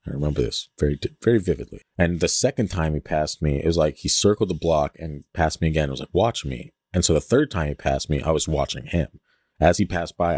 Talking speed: 260 wpm